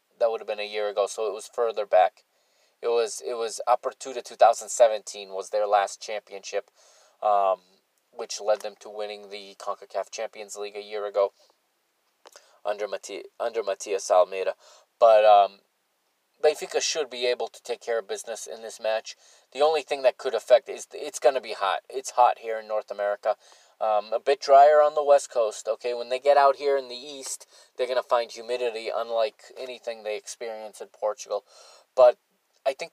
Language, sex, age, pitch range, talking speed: English, male, 20-39, 105-145 Hz, 190 wpm